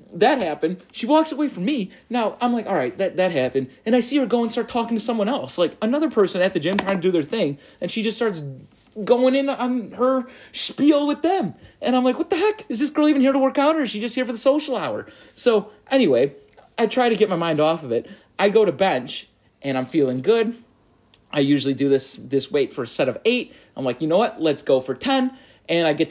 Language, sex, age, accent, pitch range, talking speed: English, male, 30-49, American, 150-245 Hz, 260 wpm